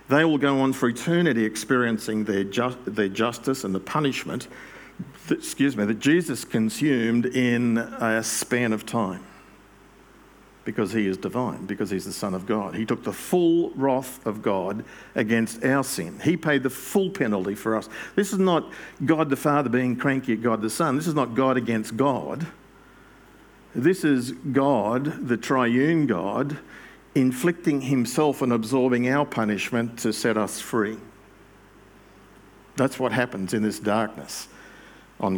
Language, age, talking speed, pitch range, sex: English, 50-69, 160 wpm, 105-135 Hz, male